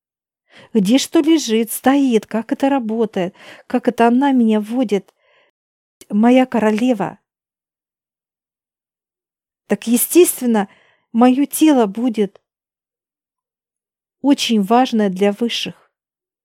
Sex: female